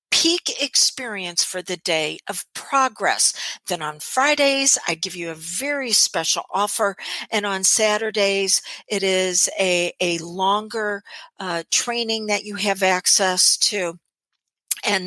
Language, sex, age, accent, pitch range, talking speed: English, female, 50-69, American, 180-235 Hz, 130 wpm